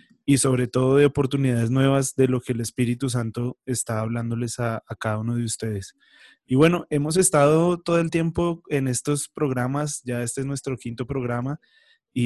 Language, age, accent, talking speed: English, 20-39, Colombian, 180 wpm